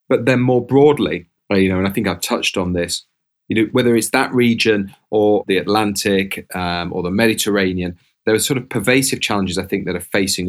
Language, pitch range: English, 95-110 Hz